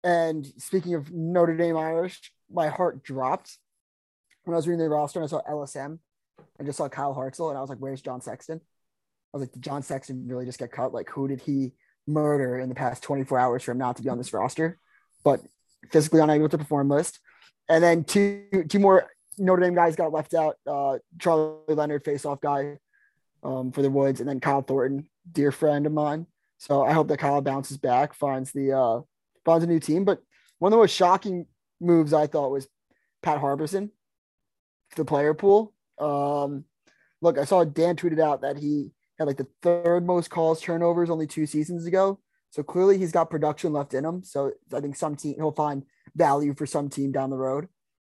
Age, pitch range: 20-39, 140-175 Hz